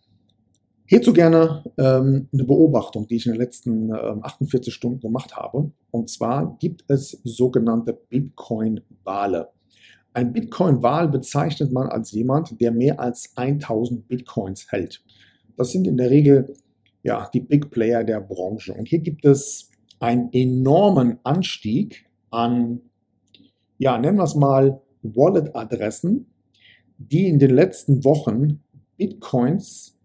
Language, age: German, 50-69